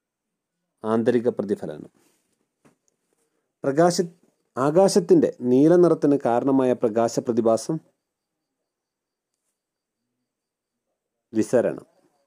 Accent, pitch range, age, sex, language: native, 115-145 Hz, 40-59, male, Malayalam